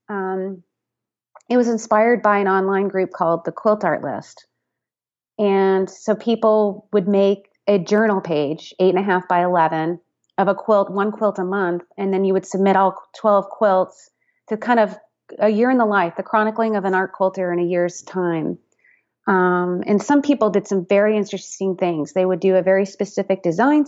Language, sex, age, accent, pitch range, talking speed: English, female, 30-49, American, 180-215 Hz, 190 wpm